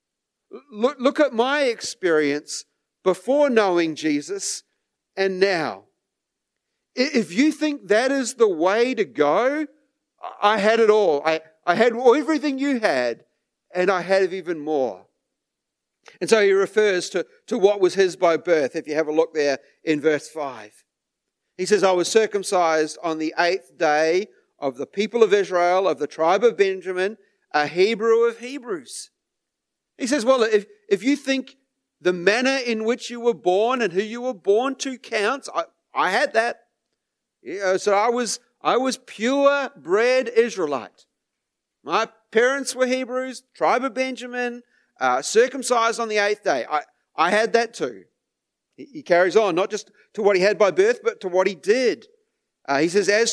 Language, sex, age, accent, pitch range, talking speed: English, male, 40-59, Australian, 190-260 Hz, 170 wpm